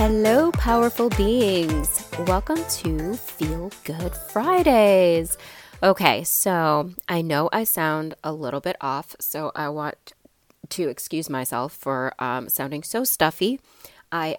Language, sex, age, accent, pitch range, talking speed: English, female, 20-39, American, 155-220 Hz, 125 wpm